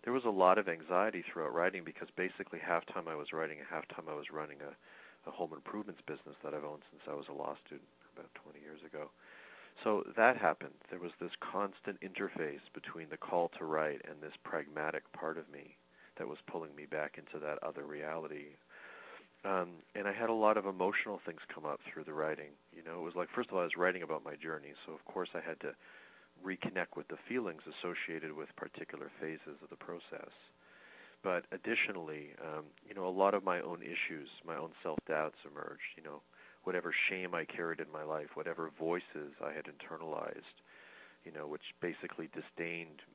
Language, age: English, 40-59